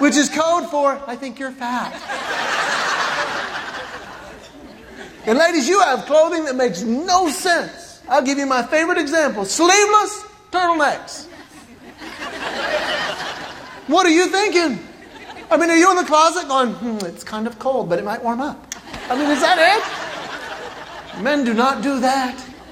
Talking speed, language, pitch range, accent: 150 wpm, English, 260-345 Hz, American